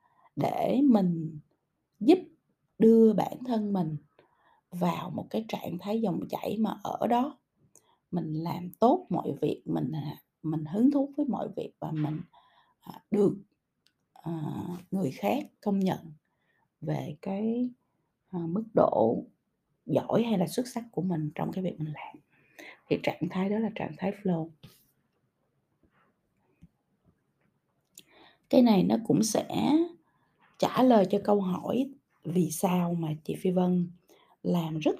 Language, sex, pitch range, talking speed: Vietnamese, female, 170-225 Hz, 135 wpm